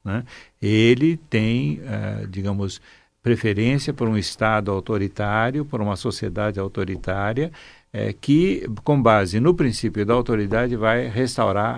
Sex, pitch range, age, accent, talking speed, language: male, 105-135 Hz, 60-79, Brazilian, 120 wpm, Portuguese